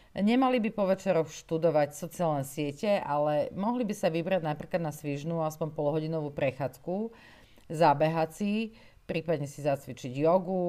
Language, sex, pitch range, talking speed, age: Slovak, female, 145-180 Hz, 135 wpm, 40-59